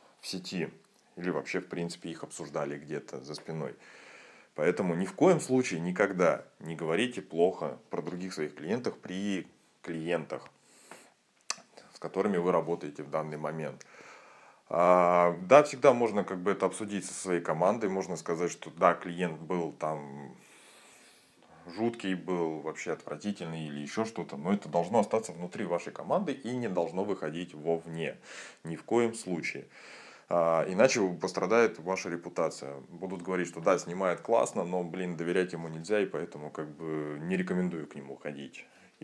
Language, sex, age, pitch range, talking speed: Russian, male, 20-39, 80-100 Hz, 150 wpm